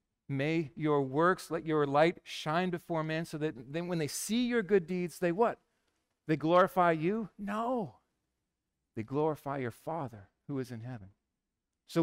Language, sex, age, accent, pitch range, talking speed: English, male, 40-59, American, 130-195 Hz, 165 wpm